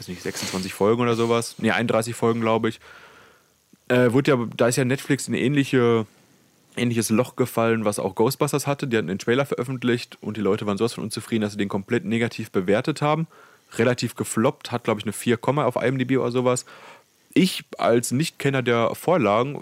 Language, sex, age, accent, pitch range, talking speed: German, male, 30-49, German, 105-125 Hz, 195 wpm